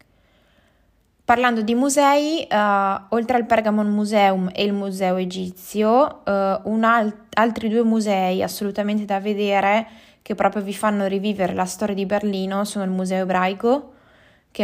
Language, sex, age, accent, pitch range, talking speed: Italian, female, 20-39, native, 190-215 Hz, 125 wpm